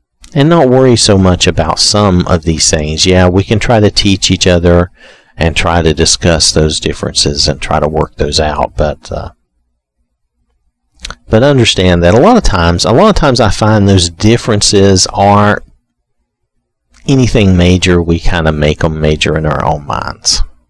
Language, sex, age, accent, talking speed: English, male, 40-59, American, 175 wpm